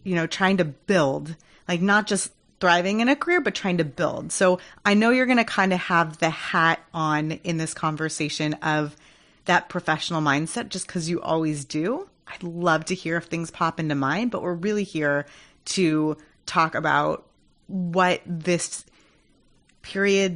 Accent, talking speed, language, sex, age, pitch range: American, 175 wpm, English, female, 30-49, 155-195 Hz